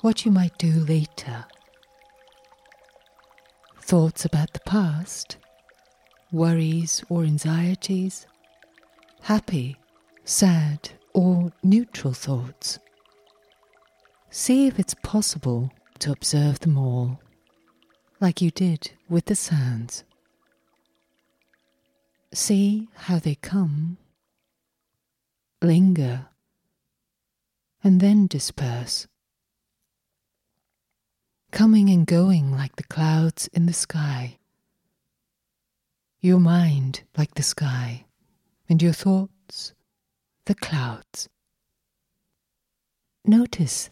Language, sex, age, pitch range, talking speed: English, female, 40-59, 135-185 Hz, 80 wpm